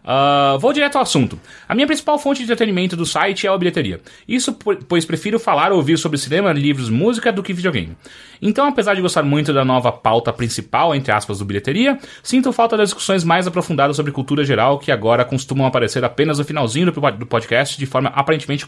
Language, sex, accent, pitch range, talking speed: Portuguese, male, Brazilian, 120-175 Hz, 200 wpm